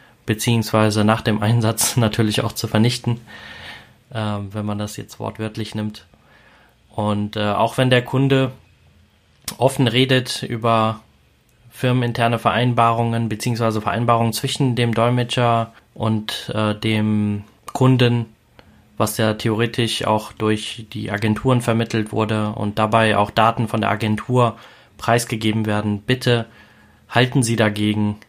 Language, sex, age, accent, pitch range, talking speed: German, male, 20-39, German, 105-120 Hz, 120 wpm